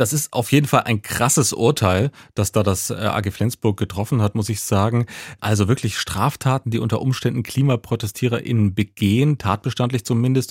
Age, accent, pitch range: 30-49, German, 105-130 Hz